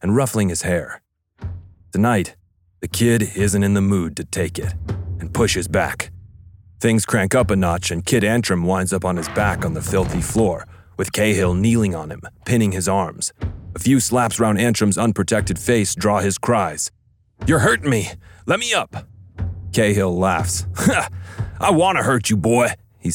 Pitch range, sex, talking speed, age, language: 90-105 Hz, male, 175 wpm, 40-59, English